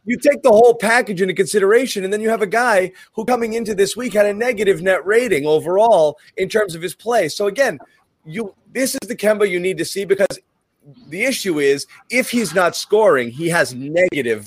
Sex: male